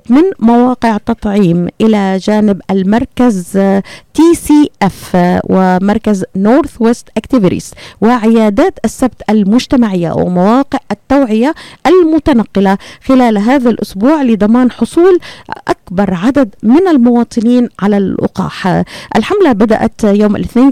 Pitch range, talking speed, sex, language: 205-255 Hz, 95 wpm, female, Arabic